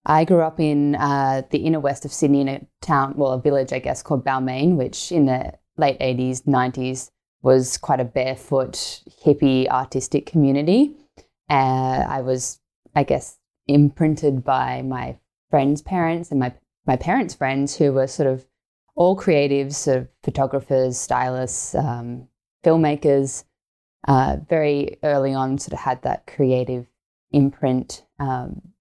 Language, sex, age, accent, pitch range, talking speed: English, female, 20-39, Australian, 130-145 Hz, 150 wpm